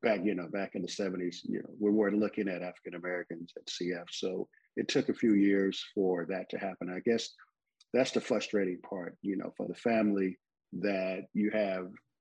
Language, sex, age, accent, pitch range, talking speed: English, male, 50-69, American, 95-105 Hz, 200 wpm